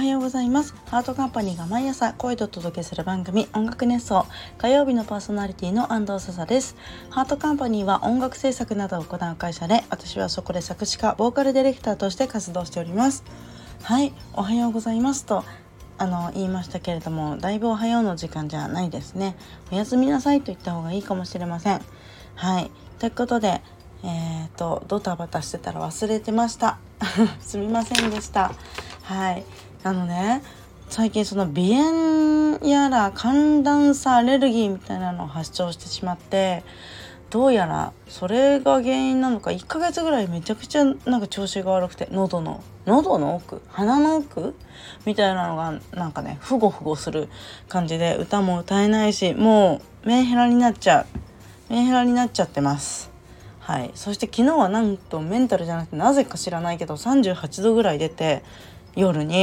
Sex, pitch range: female, 175-245 Hz